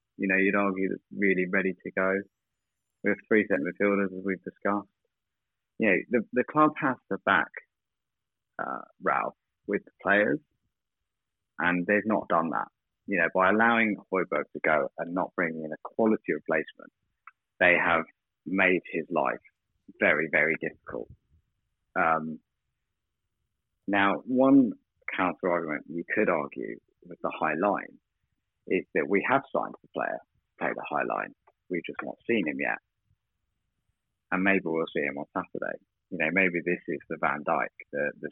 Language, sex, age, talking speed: English, male, 30-49, 160 wpm